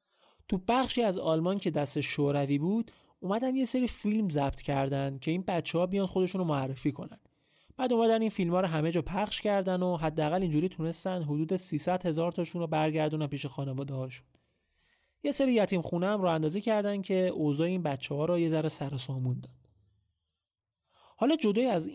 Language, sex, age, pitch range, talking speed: Persian, male, 30-49, 140-190 Hz, 175 wpm